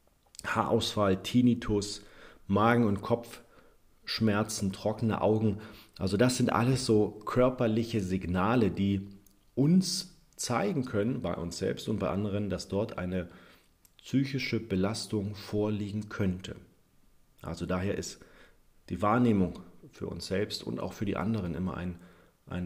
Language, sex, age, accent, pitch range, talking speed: German, male, 40-59, German, 95-115 Hz, 120 wpm